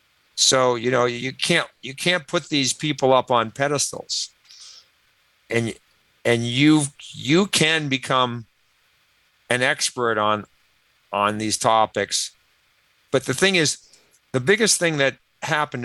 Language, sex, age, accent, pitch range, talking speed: English, male, 50-69, American, 110-135 Hz, 130 wpm